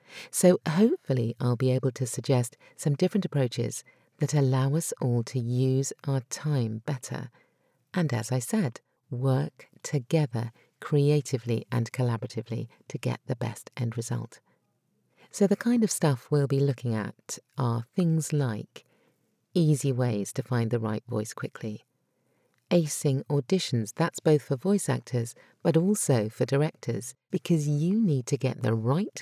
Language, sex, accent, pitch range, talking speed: English, female, British, 120-155 Hz, 150 wpm